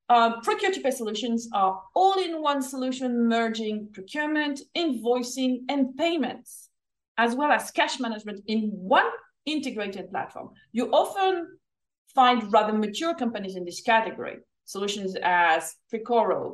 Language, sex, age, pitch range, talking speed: English, female, 30-49, 215-290 Hz, 120 wpm